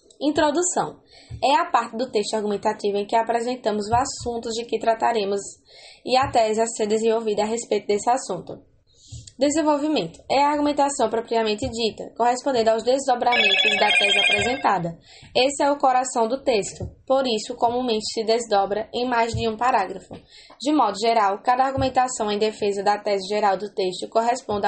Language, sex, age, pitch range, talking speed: English, female, 10-29, 210-255 Hz, 160 wpm